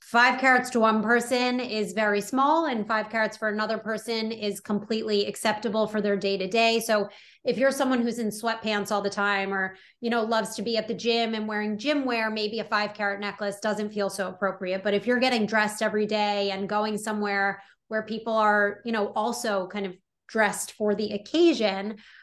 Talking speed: 205 wpm